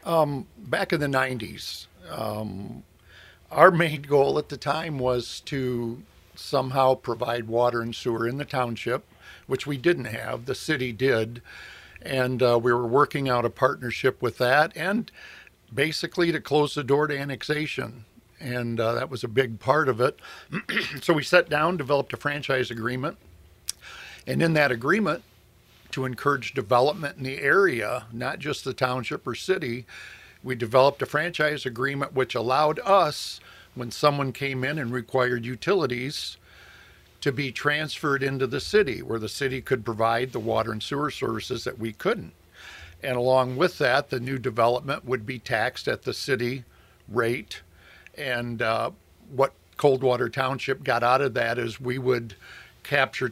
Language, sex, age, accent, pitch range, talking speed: English, male, 50-69, American, 120-145 Hz, 160 wpm